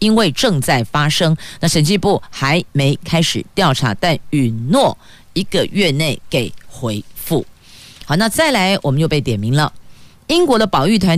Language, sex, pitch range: Chinese, female, 135-200 Hz